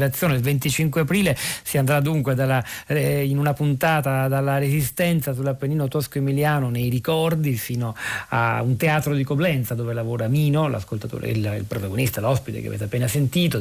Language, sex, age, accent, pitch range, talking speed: Italian, male, 40-59, native, 120-150 Hz, 155 wpm